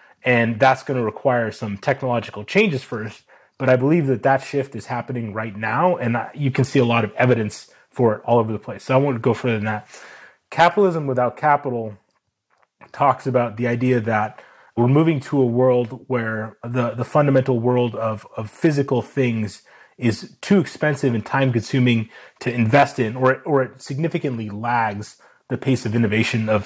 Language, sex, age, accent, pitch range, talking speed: English, male, 30-49, American, 115-135 Hz, 180 wpm